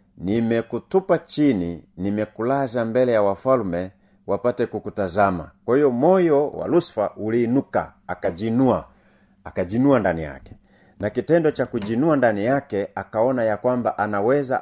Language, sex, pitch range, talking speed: Swahili, male, 105-130 Hz, 115 wpm